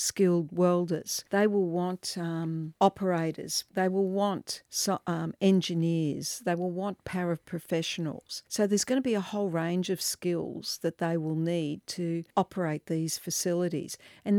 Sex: female